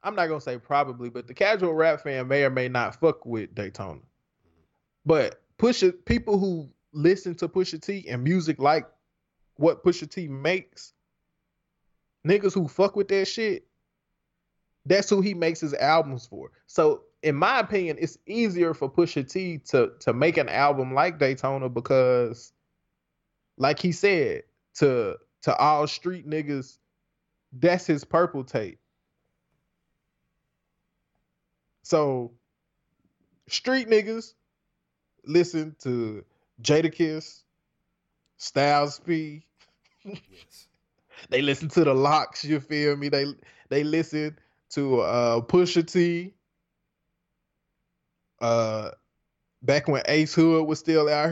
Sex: male